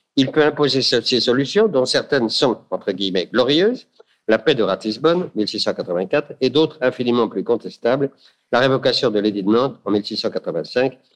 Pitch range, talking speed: 125-170 Hz, 155 wpm